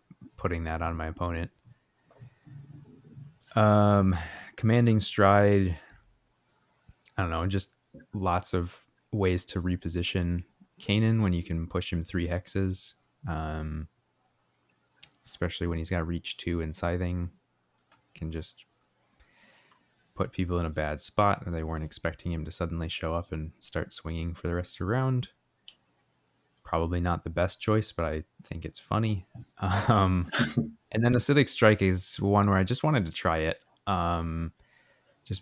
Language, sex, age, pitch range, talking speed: English, male, 20-39, 85-100 Hz, 145 wpm